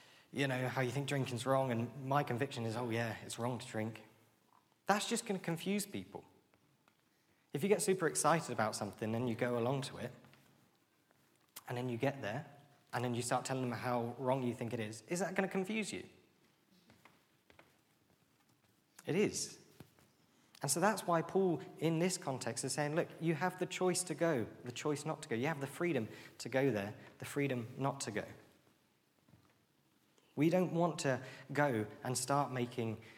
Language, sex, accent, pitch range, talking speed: English, male, British, 120-155 Hz, 185 wpm